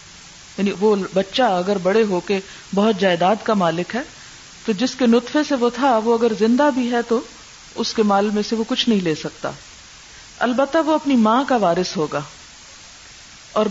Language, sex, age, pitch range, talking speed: Urdu, female, 50-69, 190-240 Hz, 185 wpm